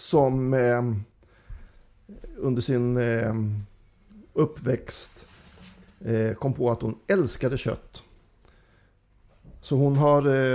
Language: English